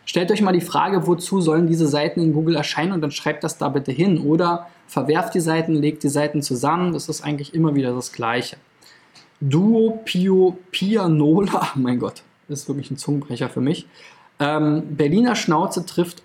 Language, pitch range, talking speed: German, 140-170 Hz, 190 wpm